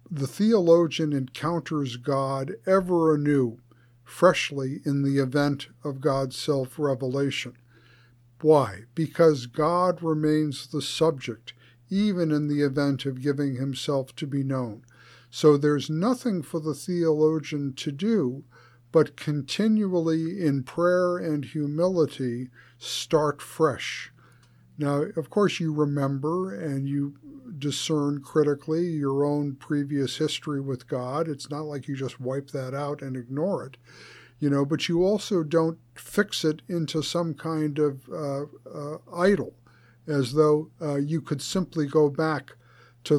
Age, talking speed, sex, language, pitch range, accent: 50-69, 130 wpm, male, English, 135-165 Hz, American